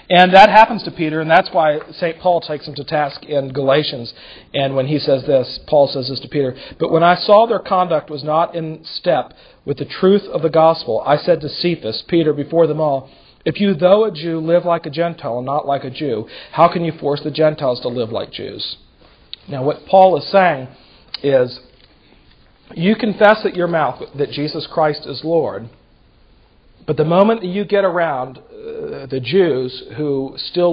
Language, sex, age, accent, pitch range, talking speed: English, male, 40-59, American, 140-170 Hz, 200 wpm